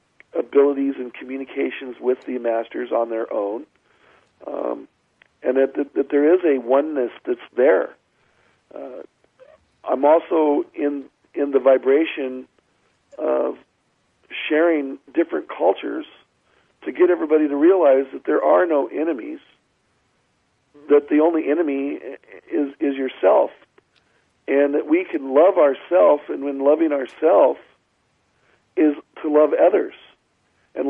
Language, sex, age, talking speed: English, male, 50-69, 120 wpm